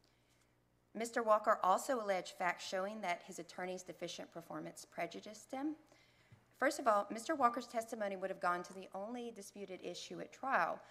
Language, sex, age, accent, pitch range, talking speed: English, female, 40-59, American, 175-220 Hz, 160 wpm